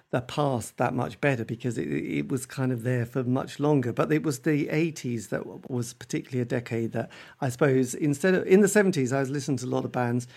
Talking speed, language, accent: 235 wpm, English, British